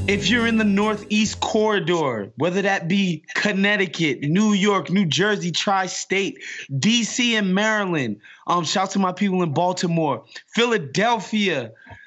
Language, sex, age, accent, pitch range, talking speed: English, male, 20-39, American, 165-205 Hz, 135 wpm